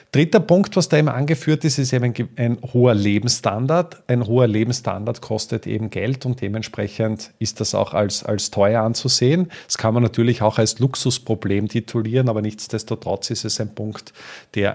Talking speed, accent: 170 wpm, Austrian